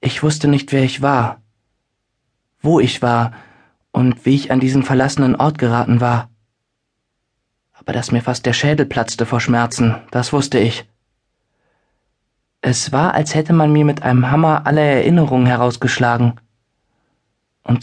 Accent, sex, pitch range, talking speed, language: German, male, 115-135 Hz, 145 wpm, German